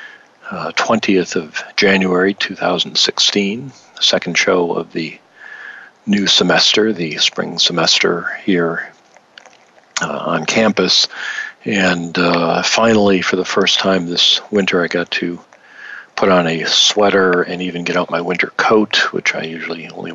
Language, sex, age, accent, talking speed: English, male, 40-59, American, 135 wpm